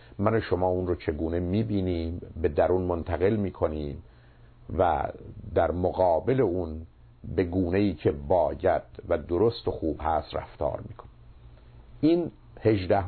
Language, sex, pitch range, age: Persian, male, 80-115 Hz, 50-69